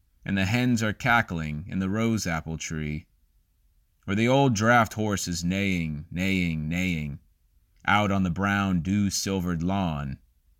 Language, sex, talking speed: English, male, 135 wpm